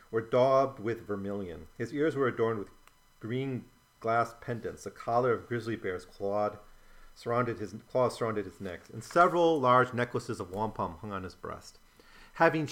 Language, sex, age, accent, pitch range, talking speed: English, male, 40-59, American, 105-130 Hz, 165 wpm